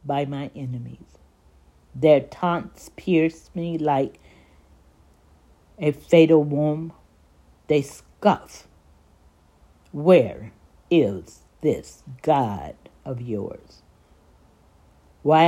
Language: English